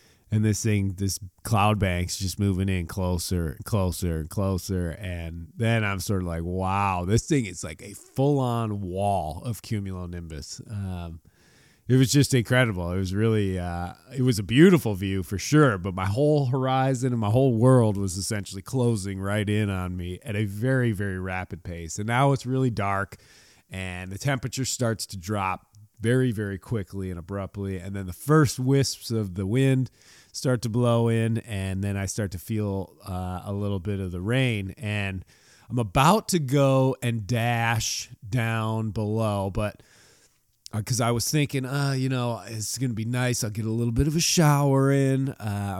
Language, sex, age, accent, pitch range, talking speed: English, male, 30-49, American, 95-125 Hz, 185 wpm